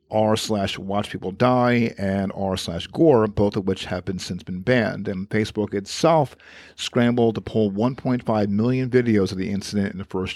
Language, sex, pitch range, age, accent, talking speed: English, male, 100-120 Hz, 50-69, American, 185 wpm